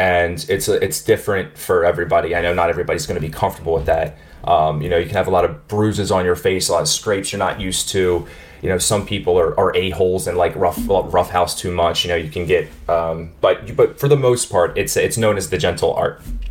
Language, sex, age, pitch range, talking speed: English, male, 20-39, 85-105 Hz, 250 wpm